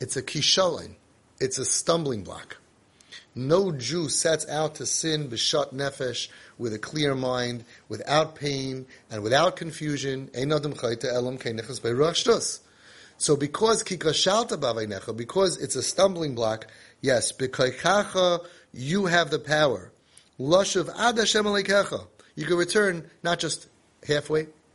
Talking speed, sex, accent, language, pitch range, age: 105 wpm, male, American, English, 125-175 Hz, 30-49